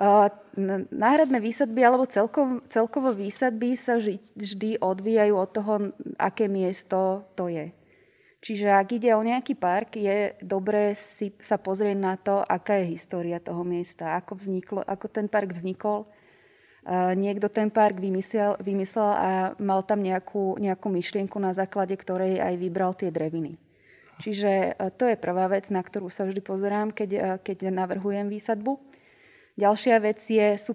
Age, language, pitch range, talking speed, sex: 20-39, Slovak, 185-210 Hz, 145 wpm, female